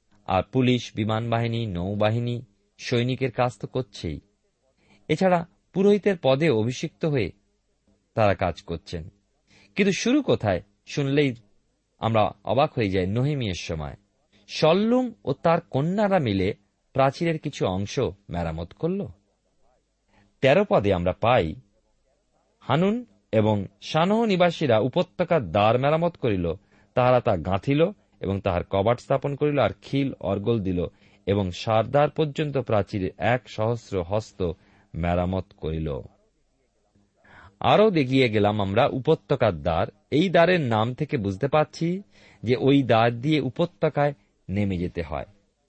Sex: male